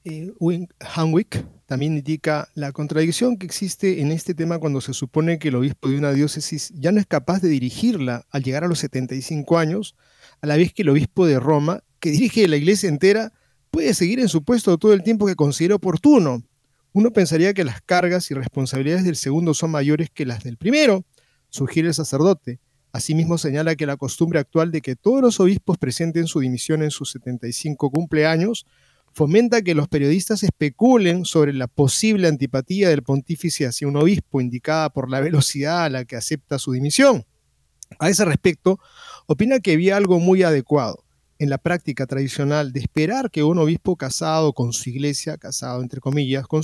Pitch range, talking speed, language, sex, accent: 140-180 Hz, 185 wpm, Spanish, male, Argentinian